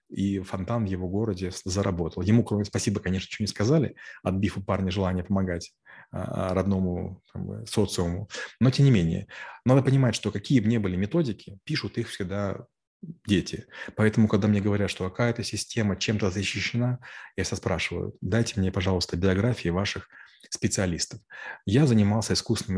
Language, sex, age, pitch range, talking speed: Russian, male, 30-49, 95-110 Hz, 155 wpm